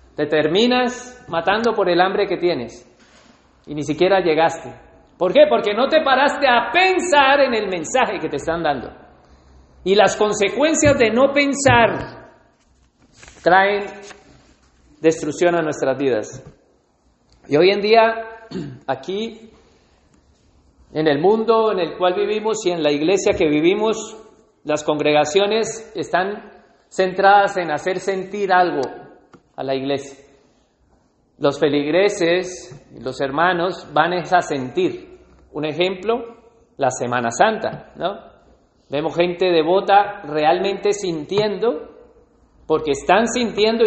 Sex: male